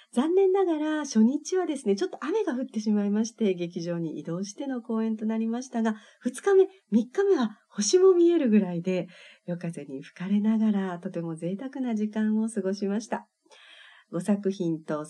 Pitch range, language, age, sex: 170-255 Hz, Japanese, 40-59, female